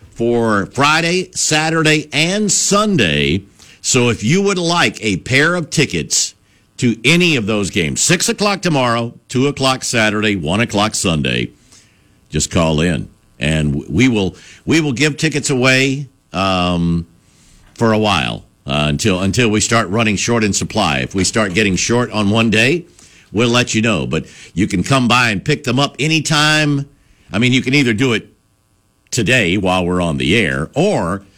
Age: 50-69